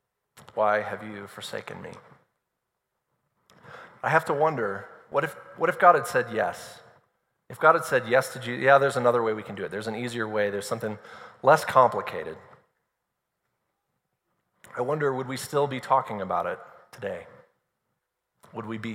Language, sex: English, male